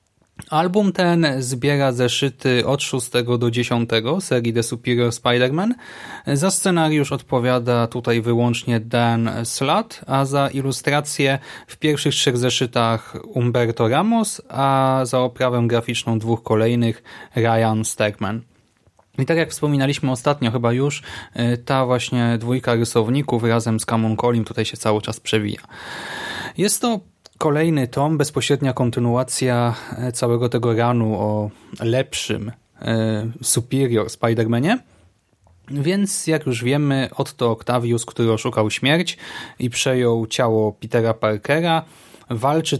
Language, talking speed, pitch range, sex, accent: Polish, 120 wpm, 115-145 Hz, male, native